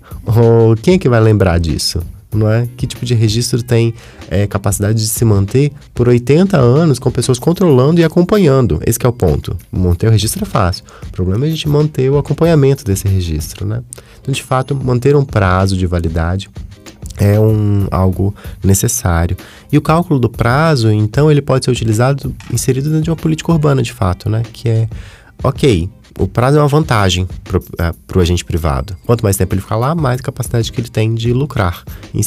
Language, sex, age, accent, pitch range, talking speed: Portuguese, male, 20-39, Brazilian, 95-130 Hz, 195 wpm